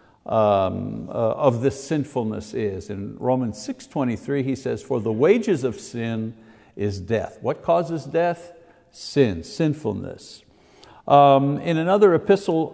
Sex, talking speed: male, 130 wpm